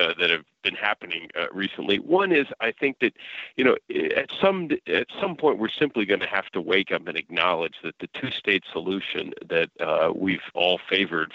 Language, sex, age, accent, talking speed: English, male, 50-69, American, 200 wpm